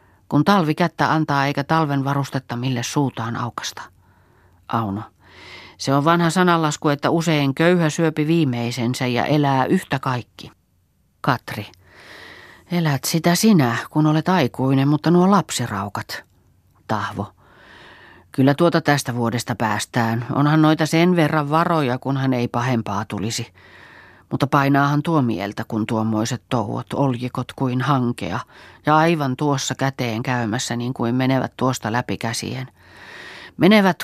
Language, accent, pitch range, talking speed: Finnish, native, 115-150 Hz, 125 wpm